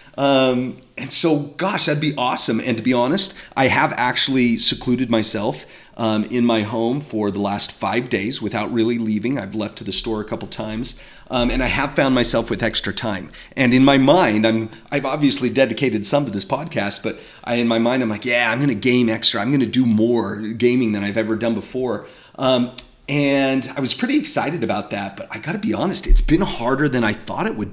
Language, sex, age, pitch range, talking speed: English, male, 30-49, 110-140 Hz, 220 wpm